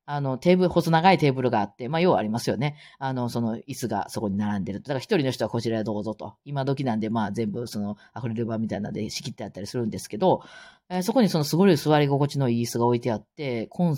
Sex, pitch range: female, 115-175 Hz